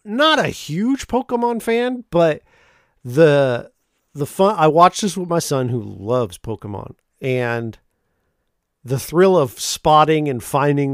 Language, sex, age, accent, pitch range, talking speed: English, male, 40-59, American, 130-170 Hz, 135 wpm